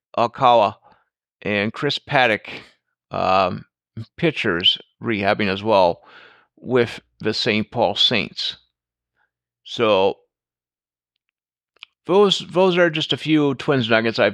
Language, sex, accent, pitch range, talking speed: English, male, American, 95-125 Hz, 105 wpm